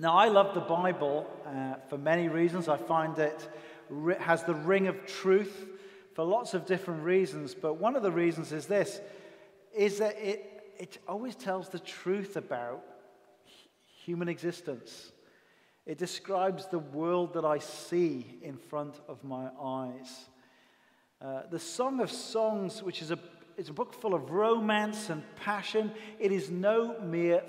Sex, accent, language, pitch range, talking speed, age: male, British, English, 165-220 Hz, 155 wpm, 40-59